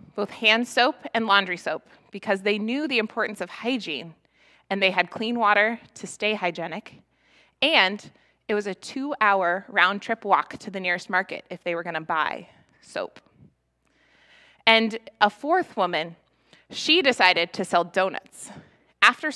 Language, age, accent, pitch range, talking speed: English, 20-39, American, 185-235 Hz, 150 wpm